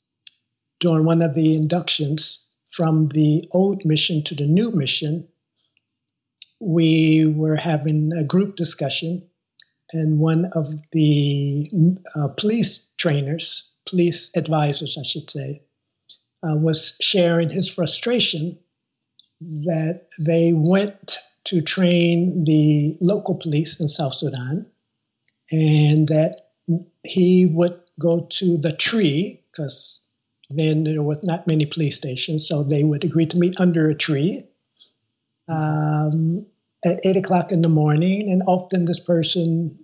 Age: 60-79